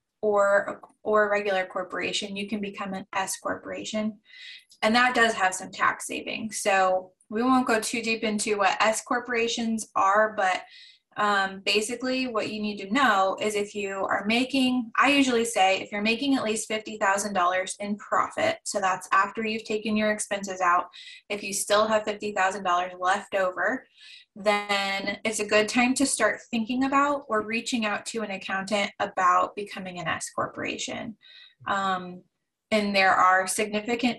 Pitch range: 195-235 Hz